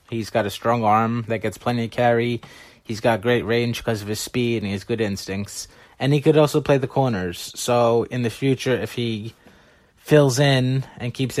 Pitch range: 105-120 Hz